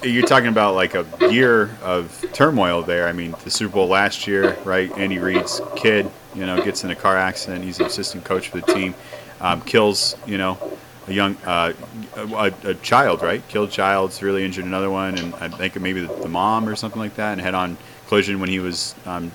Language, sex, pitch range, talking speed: English, male, 90-105 Hz, 215 wpm